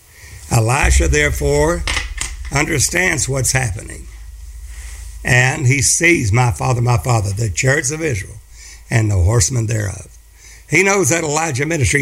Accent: American